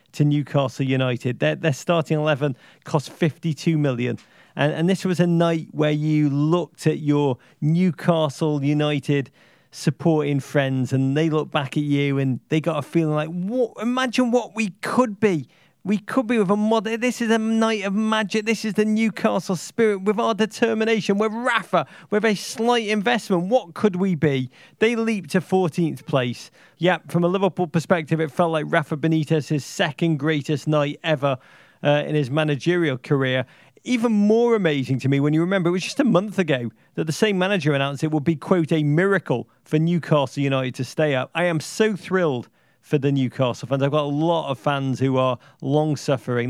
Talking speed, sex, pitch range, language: 185 wpm, male, 135-175 Hz, English